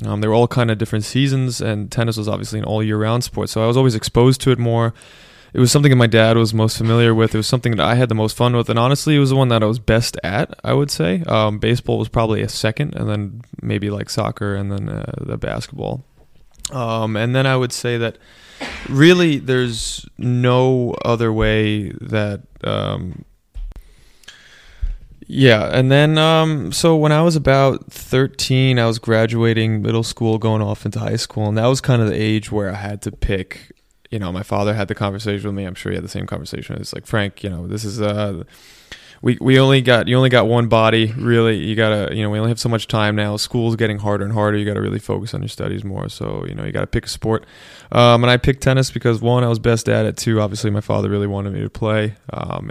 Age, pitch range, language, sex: 20-39, 105-125 Hz, English, male